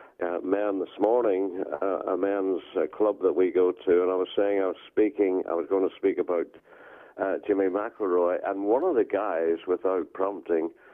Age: 50-69